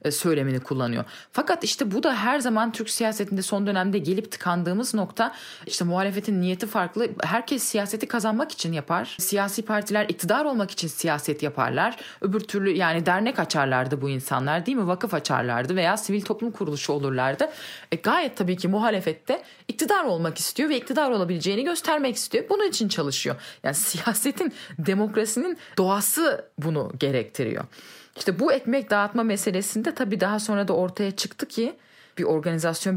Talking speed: 150 wpm